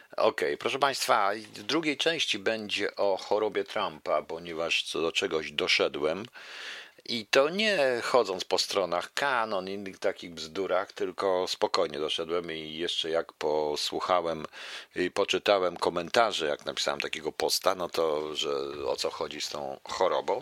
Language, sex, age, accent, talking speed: Polish, male, 50-69, native, 140 wpm